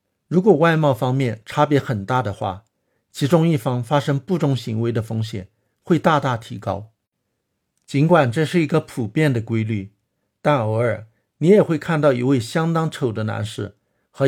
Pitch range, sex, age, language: 110-145 Hz, male, 50-69, Chinese